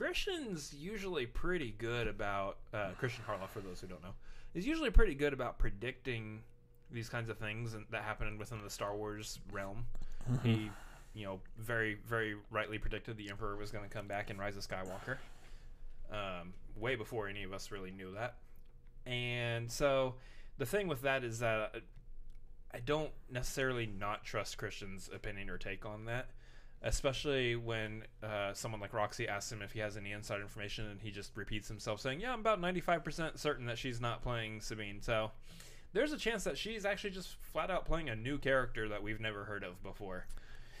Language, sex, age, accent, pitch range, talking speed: English, male, 20-39, American, 100-120 Hz, 185 wpm